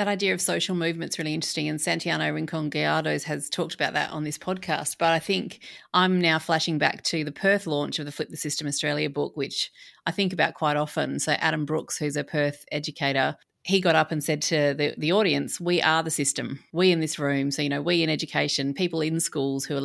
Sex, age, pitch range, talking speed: female, 30-49, 150-170 Hz, 230 wpm